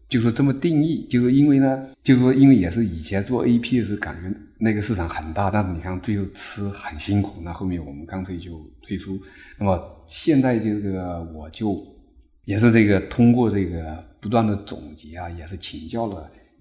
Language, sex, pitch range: Chinese, male, 90-120 Hz